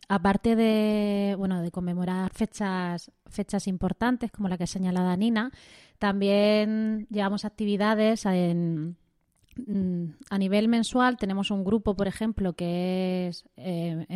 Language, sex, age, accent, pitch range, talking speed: Spanish, female, 20-39, Spanish, 180-215 Hz, 125 wpm